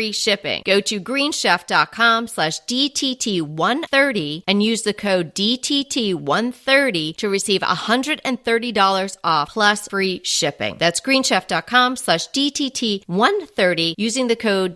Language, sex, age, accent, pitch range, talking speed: English, female, 40-59, American, 185-250 Hz, 105 wpm